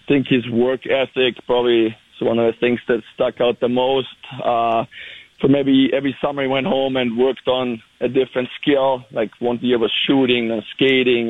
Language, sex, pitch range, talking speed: English, male, 120-135 Hz, 190 wpm